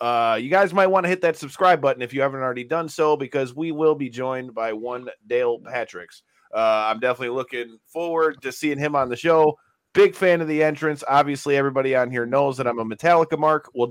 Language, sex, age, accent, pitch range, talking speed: English, male, 30-49, American, 135-165 Hz, 225 wpm